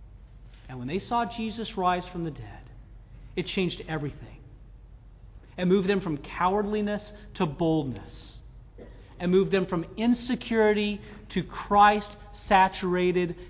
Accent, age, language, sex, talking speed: American, 40-59, English, male, 120 wpm